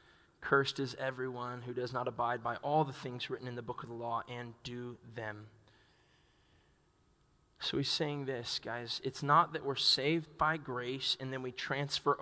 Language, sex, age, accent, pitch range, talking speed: English, male, 20-39, American, 130-165 Hz, 180 wpm